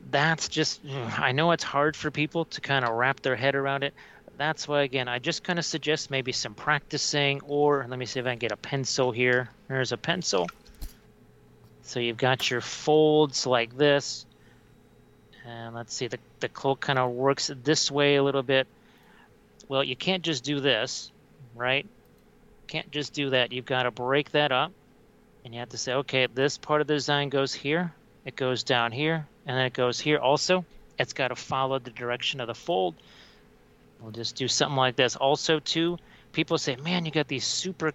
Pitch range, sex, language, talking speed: 130-155 Hz, male, English, 200 wpm